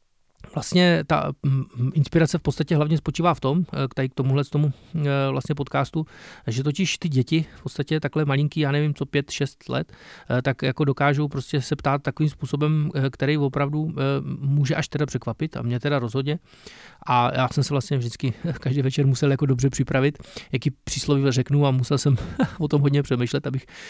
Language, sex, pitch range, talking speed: Czech, male, 130-145 Hz, 175 wpm